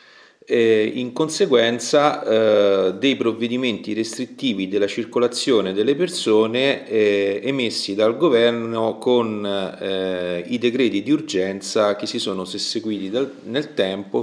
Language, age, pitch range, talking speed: Italian, 40-59, 100-130 Hz, 115 wpm